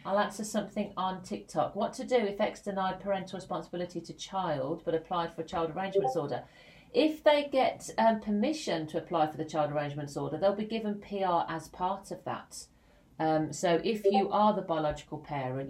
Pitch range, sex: 145-190 Hz, female